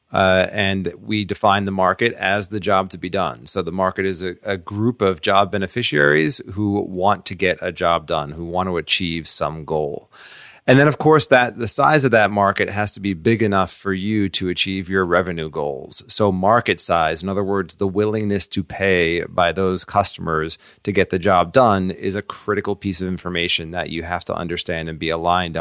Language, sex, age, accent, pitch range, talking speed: English, male, 30-49, American, 90-110 Hz, 210 wpm